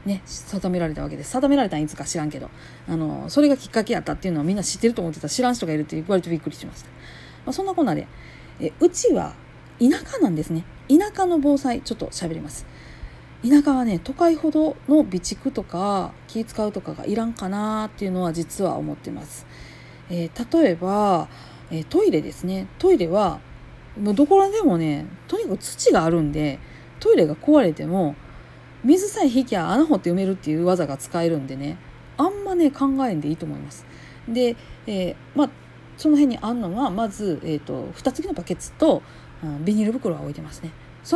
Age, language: 40-59, Japanese